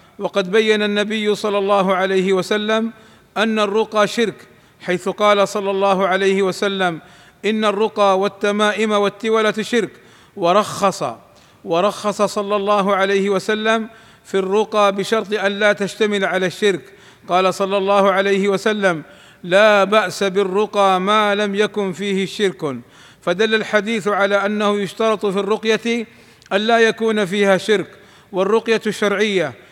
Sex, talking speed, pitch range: male, 125 wpm, 190-215 Hz